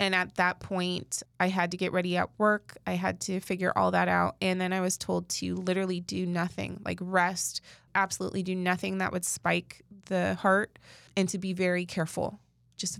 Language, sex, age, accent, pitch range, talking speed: English, female, 20-39, American, 170-190 Hz, 200 wpm